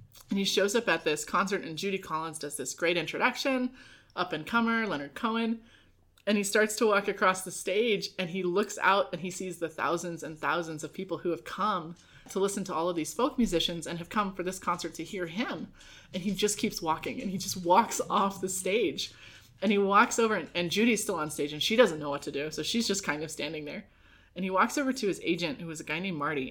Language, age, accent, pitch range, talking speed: English, 20-39, American, 160-215 Hz, 245 wpm